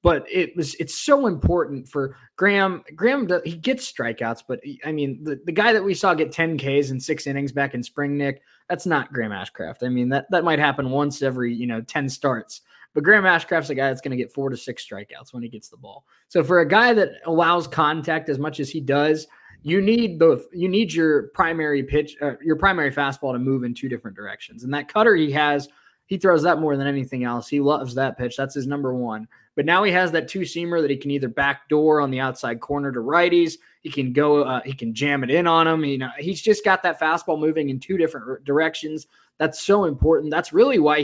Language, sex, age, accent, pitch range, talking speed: English, male, 20-39, American, 130-165 Hz, 240 wpm